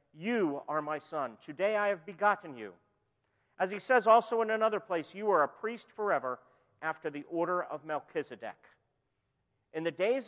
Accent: American